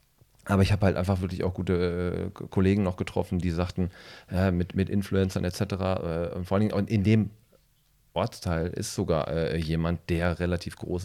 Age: 30-49